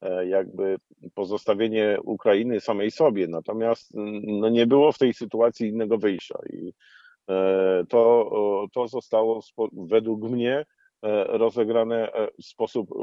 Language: Polish